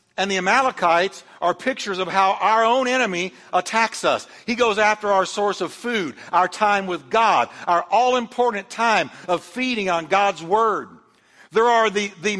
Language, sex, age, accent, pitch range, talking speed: English, male, 60-79, American, 190-250 Hz, 170 wpm